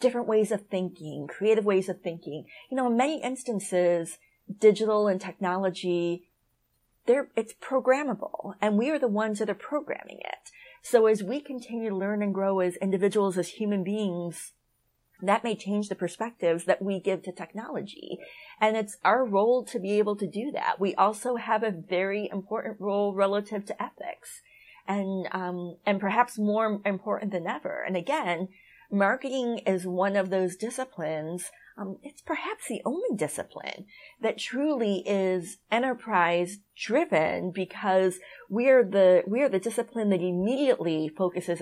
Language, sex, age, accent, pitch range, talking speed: English, female, 30-49, American, 185-230 Hz, 155 wpm